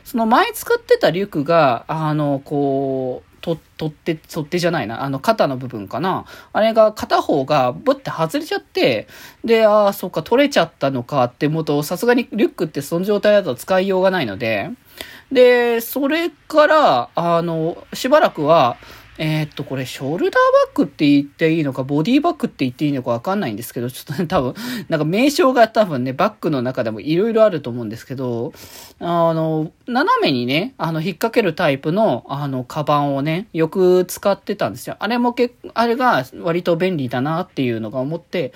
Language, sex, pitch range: Japanese, male, 145-230 Hz